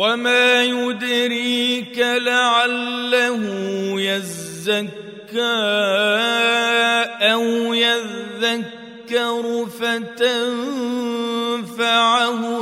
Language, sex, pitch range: Arabic, male, 200-235 Hz